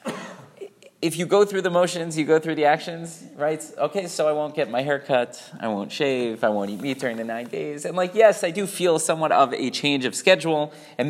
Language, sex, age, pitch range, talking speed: English, male, 30-49, 120-160 Hz, 240 wpm